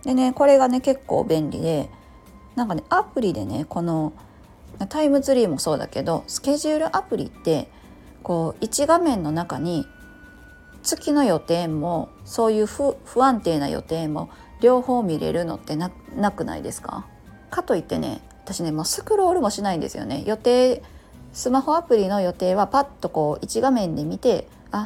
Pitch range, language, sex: 165-250 Hz, Japanese, female